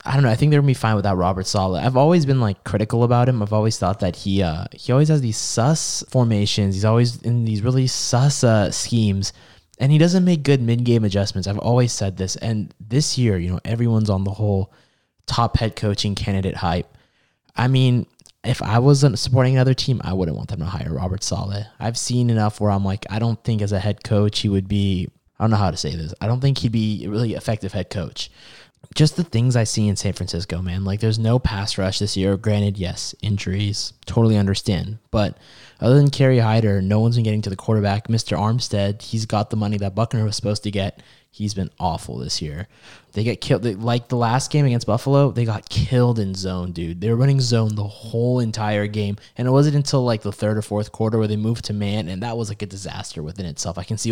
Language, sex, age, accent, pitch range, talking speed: English, male, 20-39, American, 100-120 Hz, 235 wpm